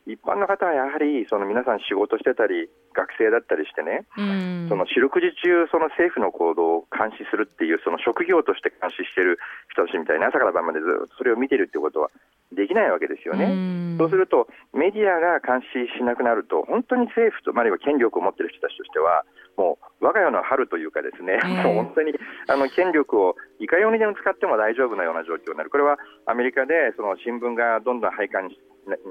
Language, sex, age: Japanese, male, 40-59